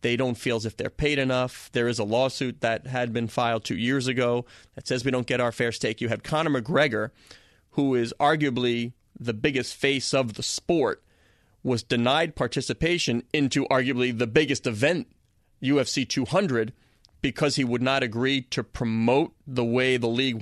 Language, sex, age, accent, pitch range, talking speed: English, male, 30-49, American, 120-155 Hz, 180 wpm